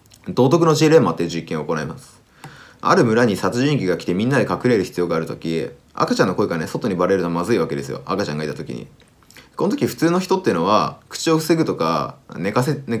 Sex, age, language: male, 20-39, Japanese